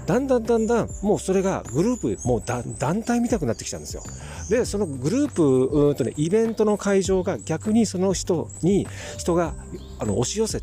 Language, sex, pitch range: Japanese, male, 110-175 Hz